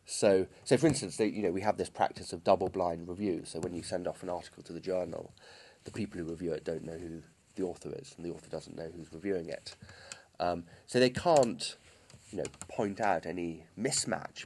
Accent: British